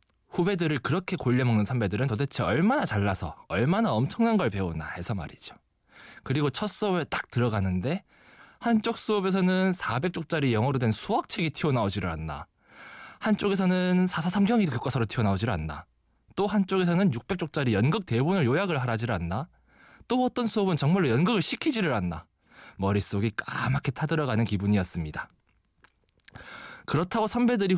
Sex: male